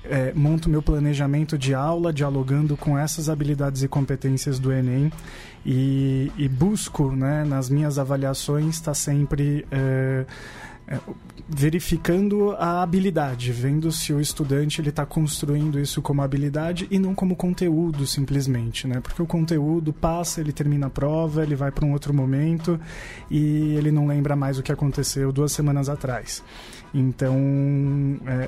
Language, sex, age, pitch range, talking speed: Portuguese, male, 20-39, 135-155 Hz, 150 wpm